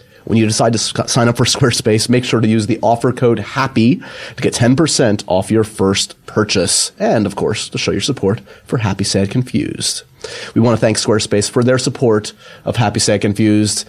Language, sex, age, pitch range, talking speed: English, male, 30-49, 100-130 Hz, 200 wpm